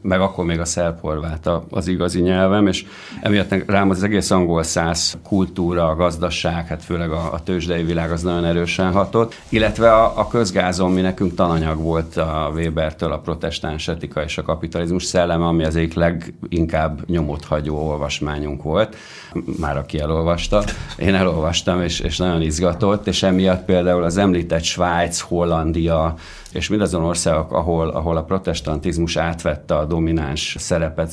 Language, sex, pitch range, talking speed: Hungarian, male, 80-95 Hz, 155 wpm